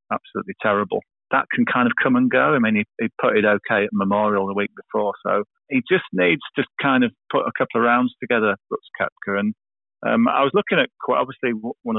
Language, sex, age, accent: English, male, 40-59, British